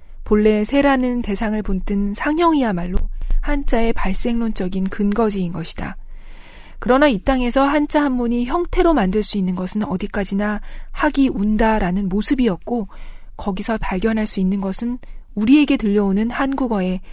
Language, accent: Korean, native